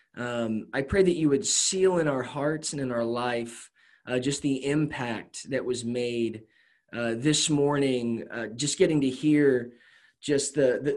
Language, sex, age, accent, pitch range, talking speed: English, male, 20-39, American, 115-150 Hz, 175 wpm